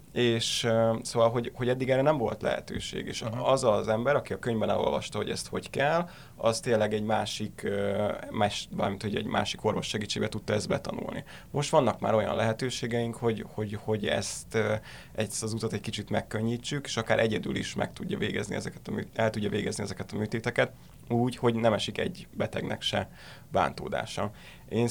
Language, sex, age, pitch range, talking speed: Hungarian, male, 20-39, 105-120 Hz, 180 wpm